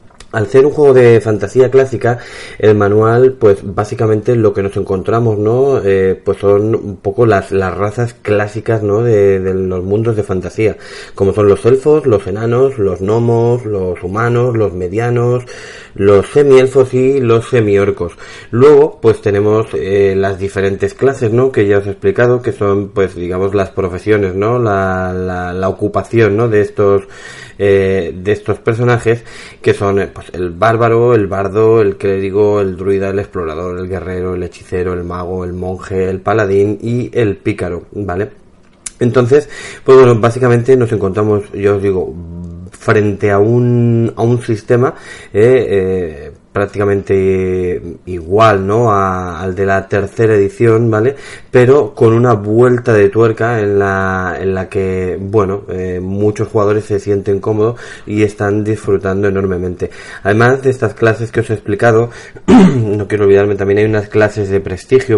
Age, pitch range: 30-49, 95-115 Hz